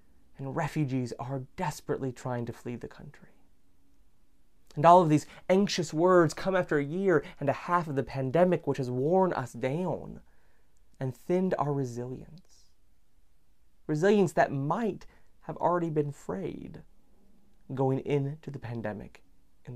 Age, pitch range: 30-49, 95-155 Hz